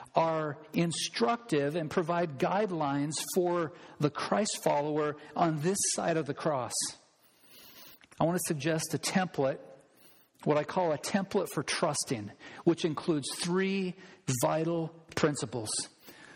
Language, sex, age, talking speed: English, male, 50-69, 120 wpm